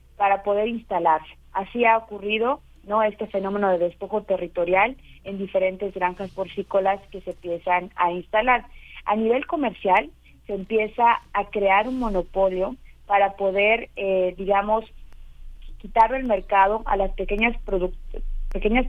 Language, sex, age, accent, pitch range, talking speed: Spanish, female, 40-59, Mexican, 190-225 Hz, 135 wpm